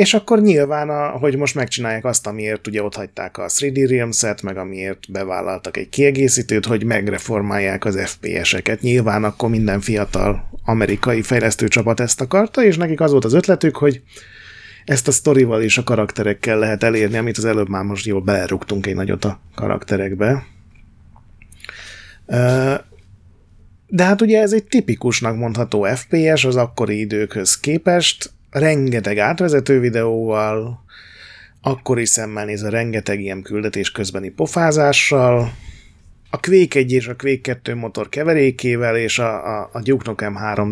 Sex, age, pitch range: male, 30-49, 100-135 Hz